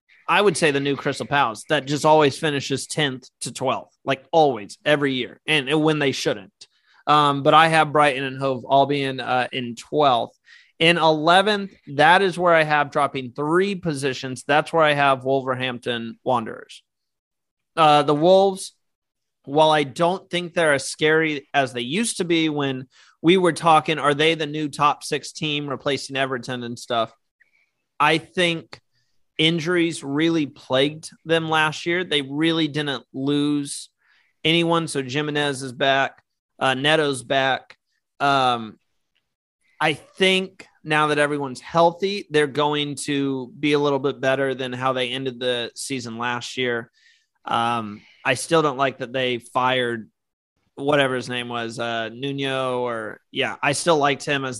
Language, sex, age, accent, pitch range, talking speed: English, male, 30-49, American, 130-155 Hz, 160 wpm